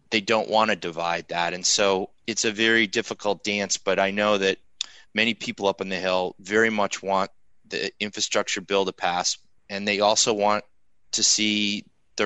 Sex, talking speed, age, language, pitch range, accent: male, 185 wpm, 30-49, English, 95-110 Hz, American